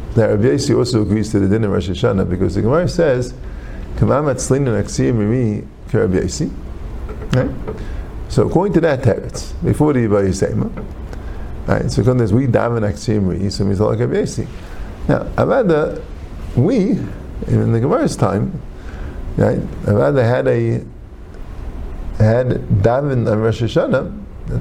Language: English